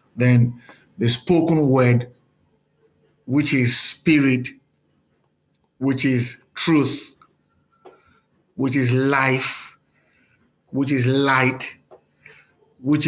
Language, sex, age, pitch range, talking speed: English, male, 60-79, 125-145 Hz, 80 wpm